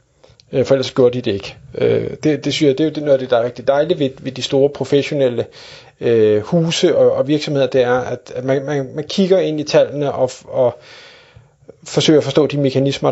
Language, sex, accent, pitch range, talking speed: Danish, male, native, 135-165 Hz, 215 wpm